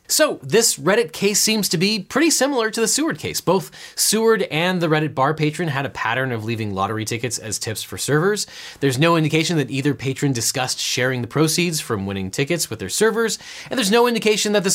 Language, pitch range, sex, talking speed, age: English, 130-185 Hz, male, 215 wpm, 20-39